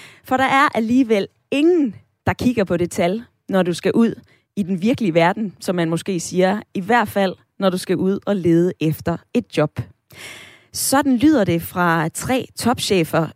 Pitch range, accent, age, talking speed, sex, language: 170-230 Hz, native, 20-39, 180 wpm, female, Danish